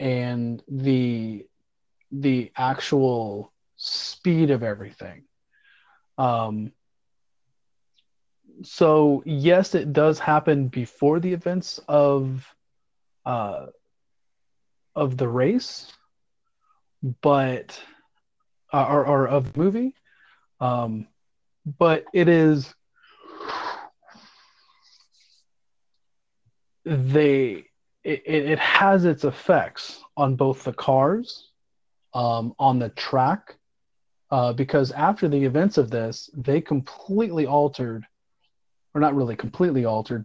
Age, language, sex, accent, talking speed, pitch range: 30-49, English, male, American, 90 wpm, 115-150 Hz